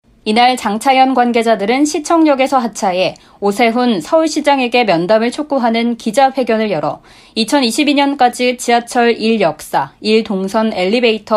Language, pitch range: Korean, 220-280 Hz